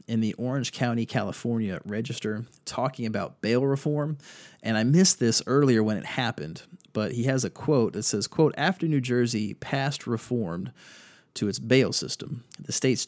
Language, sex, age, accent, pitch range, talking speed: English, male, 30-49, American, 110-135 Hz, 170 wpm